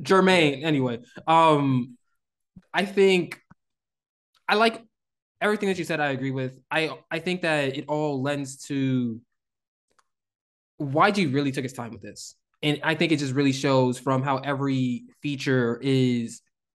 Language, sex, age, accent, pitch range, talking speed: English, male, 20-39, American, 125-150 Hz, 155 wpm